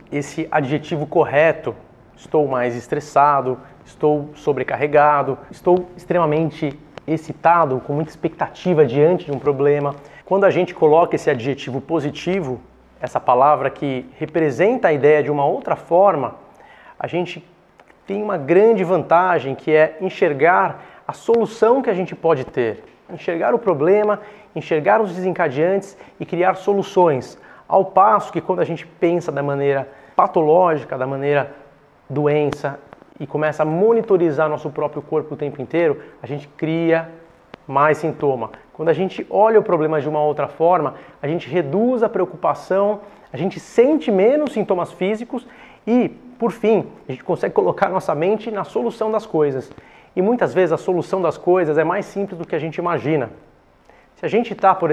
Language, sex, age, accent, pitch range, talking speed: Portuguese, male, 30-49, Brazilian, 145-190 Hz, 155 wpm